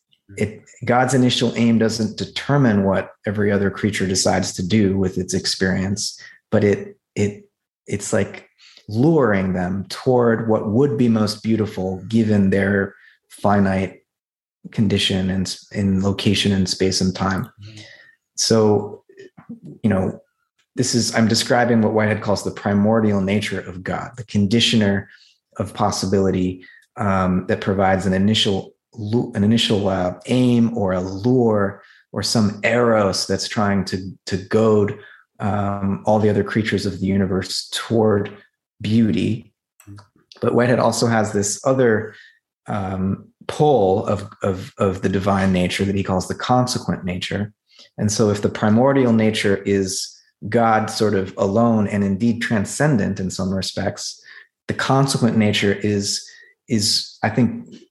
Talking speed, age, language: 140 wpm, 30-49, English